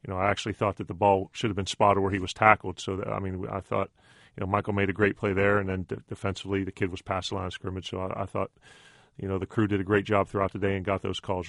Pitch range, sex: 95-105 Hz, male